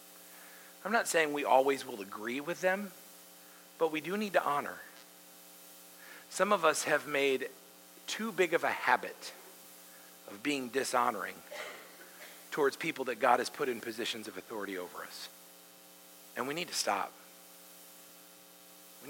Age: 40-59